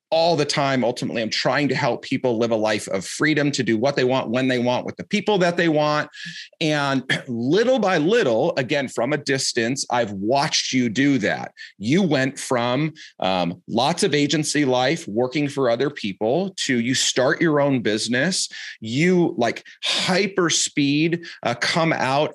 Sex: male